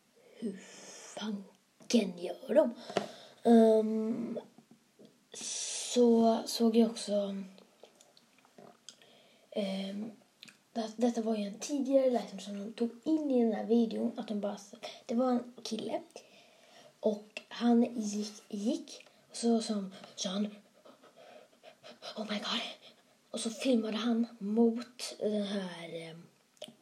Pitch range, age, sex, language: 215-255 Hz, 20-39, female, Swedish